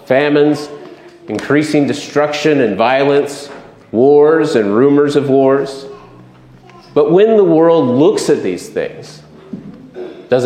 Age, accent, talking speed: 40-59, American, 110 wpm